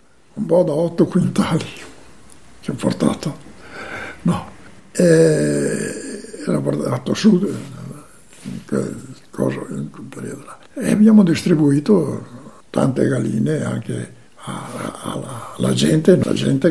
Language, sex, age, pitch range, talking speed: Italian, male, 60-79, 155-240 Hz, 100 wpm